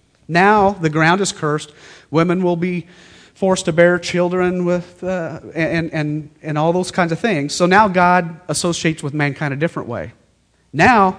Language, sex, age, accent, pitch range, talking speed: English, male, 40-59, American, 150-185 Hz, 170 wpm